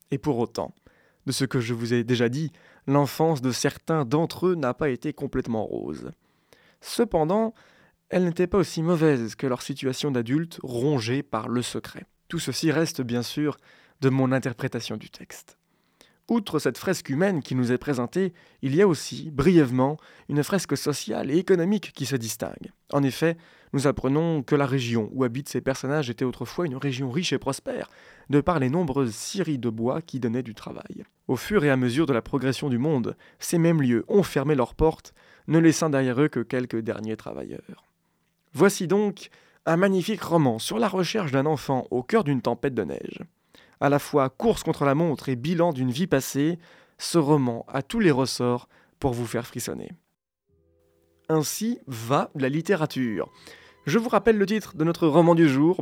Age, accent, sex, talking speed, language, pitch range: 20-39, French, male, 185 wpm, French, 125-165 Hz